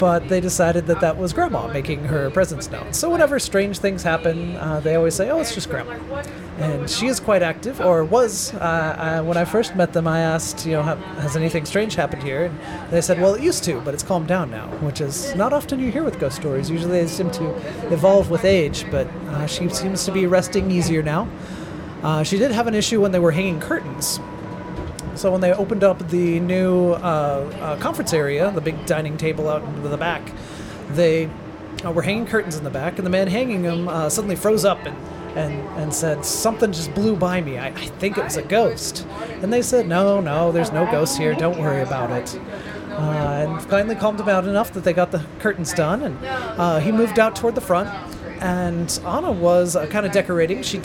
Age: 30-49